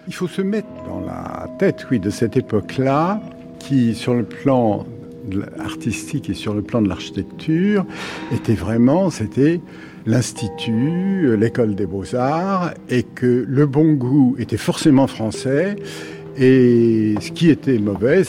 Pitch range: 105-145 Hz